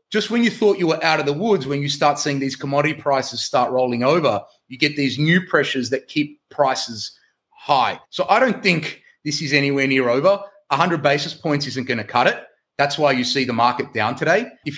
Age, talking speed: 30-49, 225 wpm